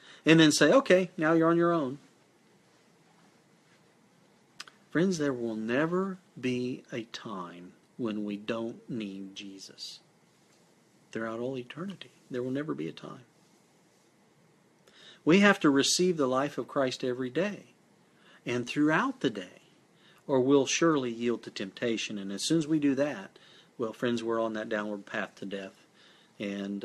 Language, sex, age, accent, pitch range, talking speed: English, male, 50-69, American, 115-160 Hz, 150 wpm